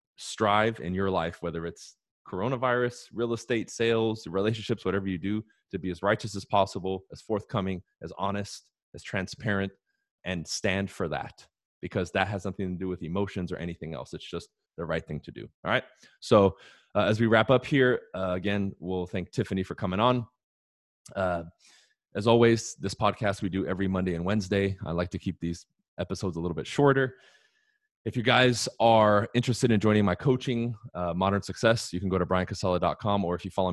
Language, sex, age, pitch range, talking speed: English, male, 20-39, 90-105 Hz, 190 wpm